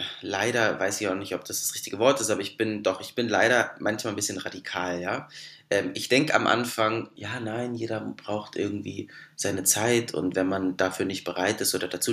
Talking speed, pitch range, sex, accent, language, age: 215 wpm, 95-115 Hz, male, German, German, 20-39